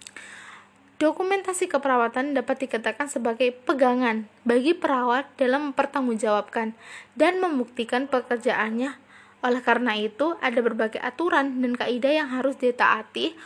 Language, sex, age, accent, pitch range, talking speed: Indonesian, female, 20-39, native, 240-290 Hz, 105 wpm